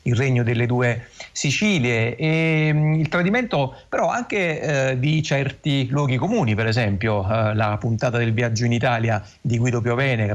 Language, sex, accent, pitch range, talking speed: Italian, male, native, 110-135 Hz, 160 wpm